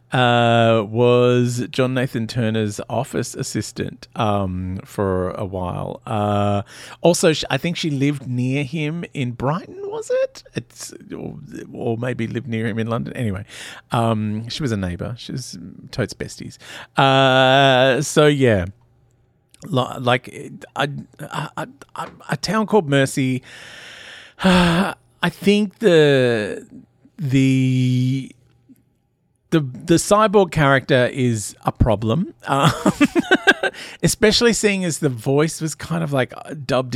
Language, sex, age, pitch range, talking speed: English, male, 40-59, 110-140 Hz, 130 wpm